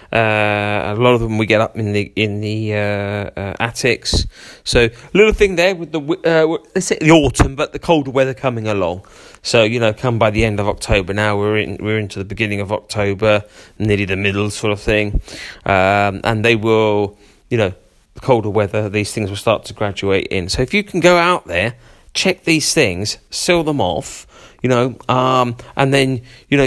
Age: 30-49